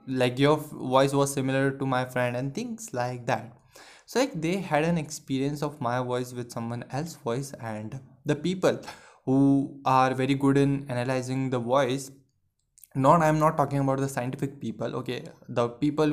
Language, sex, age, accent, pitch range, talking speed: Hindi, male, 20-39, native, 125-145 Hz, 180 wpm